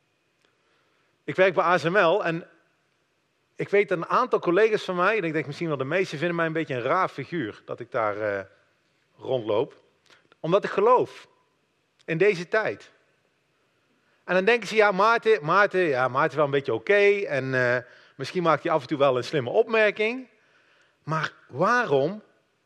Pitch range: 165-220 Hz